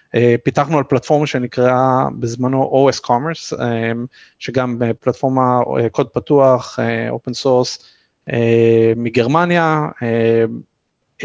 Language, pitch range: Hebrew, 120-140 Hz